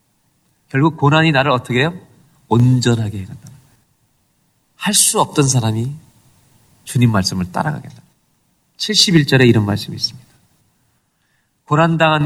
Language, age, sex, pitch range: Korean, 40-59, male, 115-155 Hz